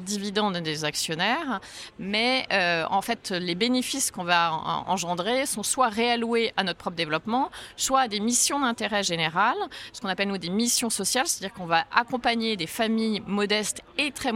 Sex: female